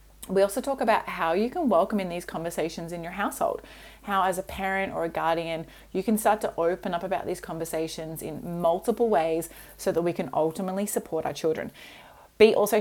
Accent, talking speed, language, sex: Australian, 200 wpm, English, female